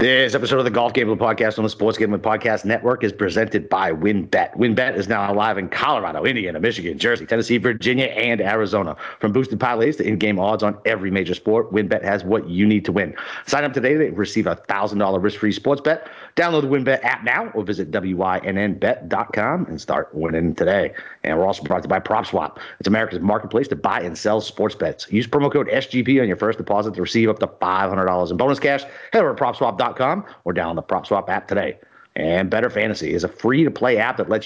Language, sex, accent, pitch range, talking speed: English, male, American, 100-125 Hz, 210 wpm